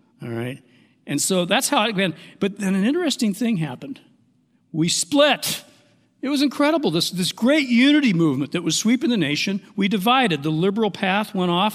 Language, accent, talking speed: English, American, 185 wpm